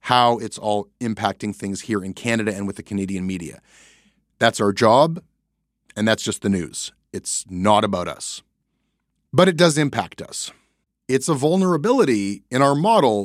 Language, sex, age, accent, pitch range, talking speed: English, male, 30-49, American, 100-135 Hz, 165 wpm